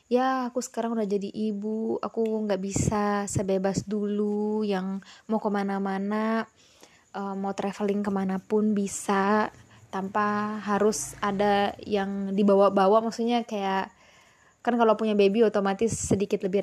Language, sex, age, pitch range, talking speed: Indonesian, female, 20-39, 195-215 Hz, 115 wpm